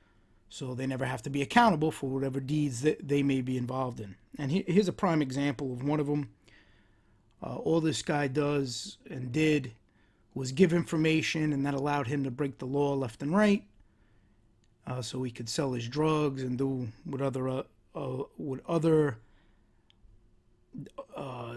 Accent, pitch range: American, 110-150 Hz